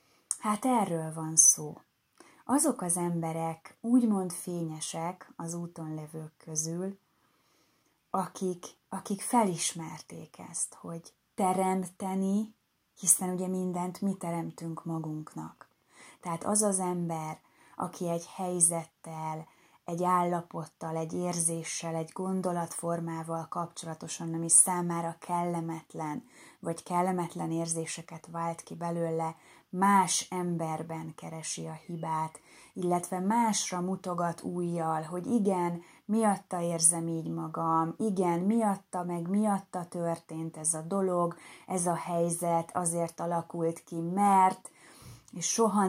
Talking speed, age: 105 wpm, 20-39